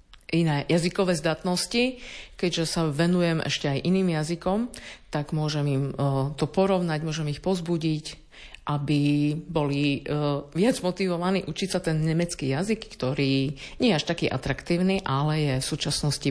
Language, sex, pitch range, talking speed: Slovak, female, 145-185 Hz, 135 wpm